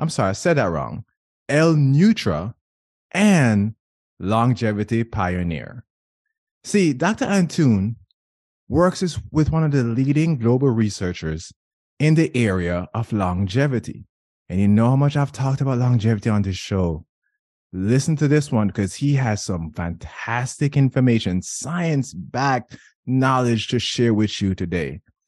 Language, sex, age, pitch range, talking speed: English, male, 20-39, 100-145 Hz, 135 wpm